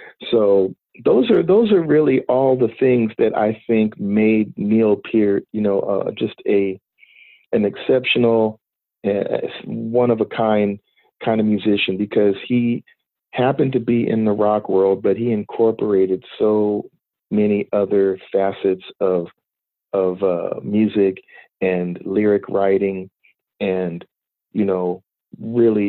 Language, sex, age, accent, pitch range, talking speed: English, male, 40-59, American, 95-105 Hz, 130 wpm